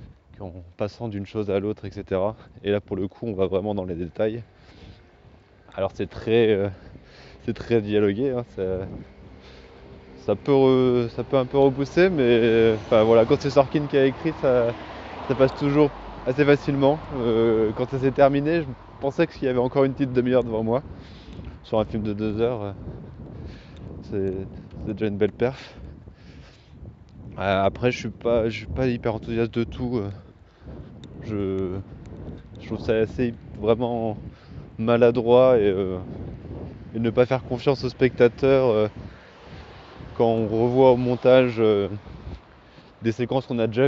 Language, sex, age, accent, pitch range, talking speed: French, male, 20-39, French, 100-125 Hz, 165 wpm